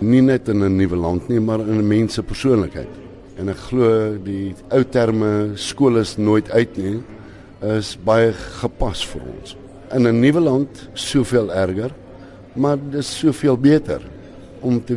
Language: English